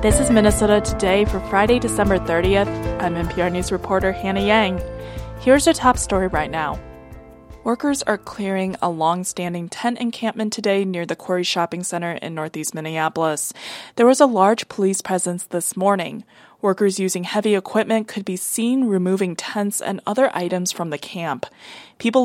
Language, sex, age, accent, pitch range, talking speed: English, female, 20-39, American, 175-220 Hz, 160 wpm